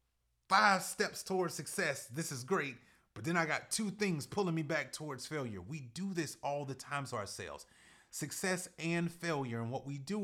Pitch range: 115-160 Hz